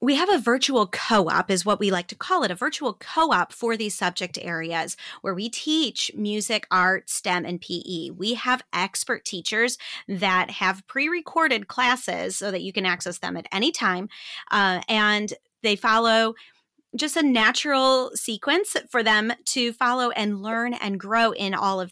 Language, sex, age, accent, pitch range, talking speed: English, female, 30-49, American, 185-240 Hz, 180 wpm